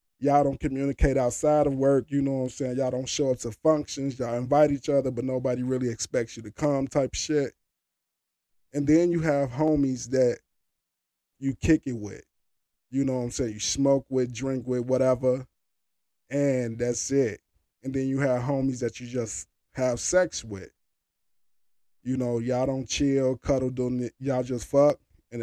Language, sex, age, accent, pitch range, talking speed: English, male, 20-39, American, 120-145 Hz, 175 wpm